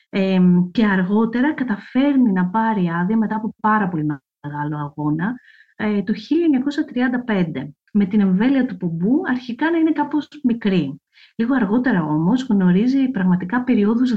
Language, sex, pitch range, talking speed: English, female, 180-245 Hz, 125 wpm